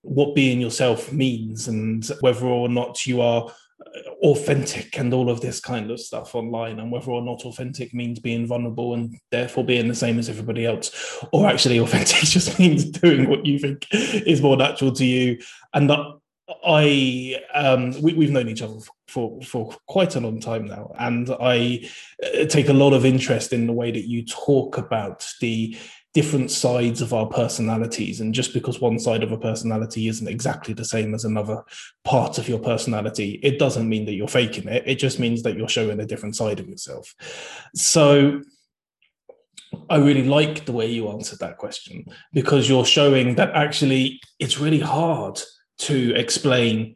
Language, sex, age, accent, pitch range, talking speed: English, male, 20-39, British, 115-140 Hz, 180 wpm